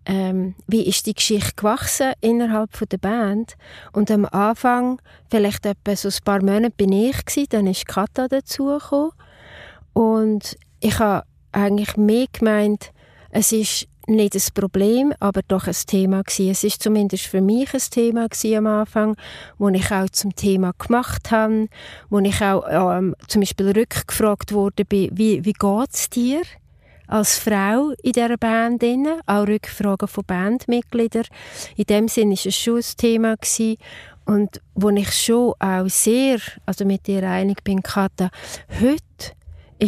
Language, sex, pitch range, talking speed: German, female, 195-225 Hz, 155 wpm